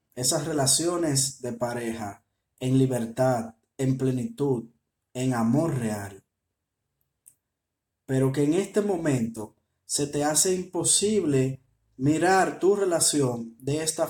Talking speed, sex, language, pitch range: 105 wpm, male, Spanish, 115-160 Hz